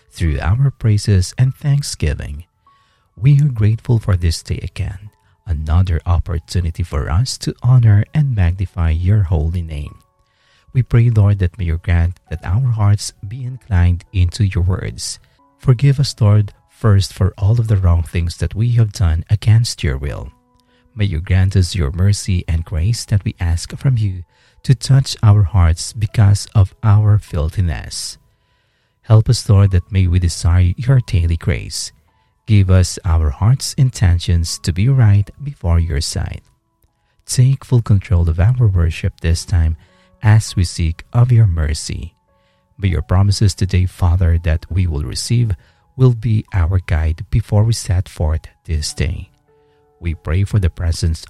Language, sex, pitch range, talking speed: English, male, 85-110 Hz, 160 wpm